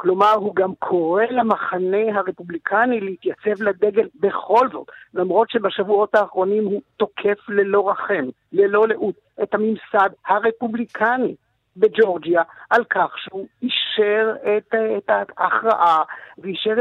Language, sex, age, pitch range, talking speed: Hebrew, male, 50-69, 195-235 Hz, 110 wpm